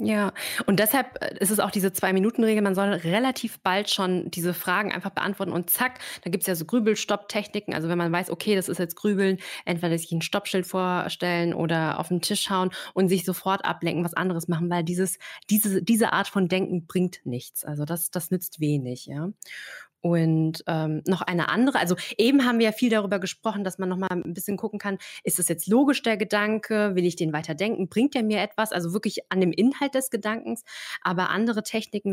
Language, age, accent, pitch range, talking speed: German, 20-39, German, 175-210 Hz, 205 wpm